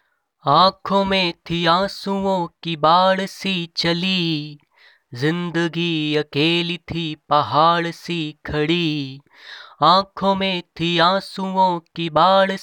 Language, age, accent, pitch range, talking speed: Hindi, 20-39, native, 145-175 Hz, 95 wpm